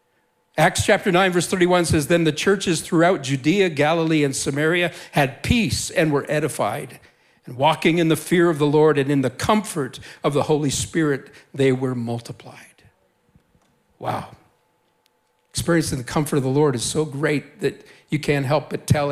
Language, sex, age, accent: English, male, 50-69, American